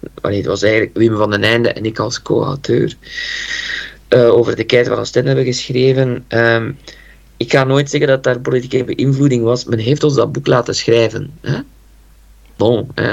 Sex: male